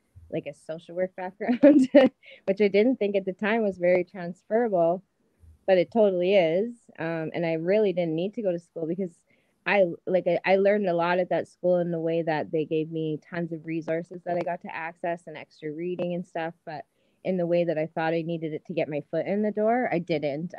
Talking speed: 230 wpm